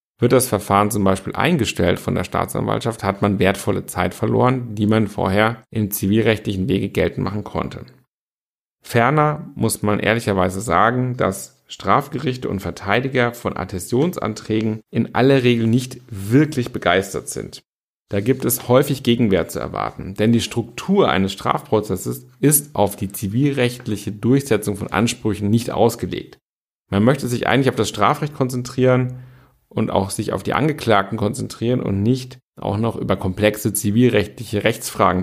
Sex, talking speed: male, 145 wpm